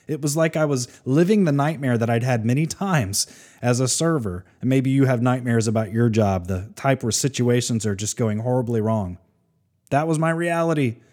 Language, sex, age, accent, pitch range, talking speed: English, male, 30-49, American, 110-145 Hz, 200 wpm